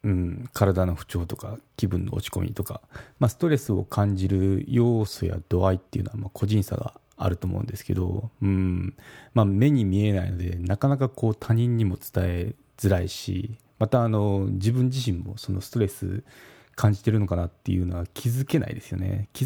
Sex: male